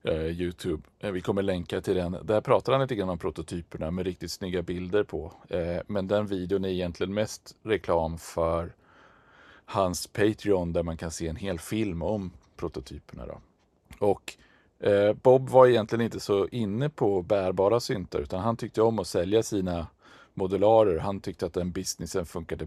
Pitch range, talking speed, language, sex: 90-110 Hz, 160 wpm, Swedish, male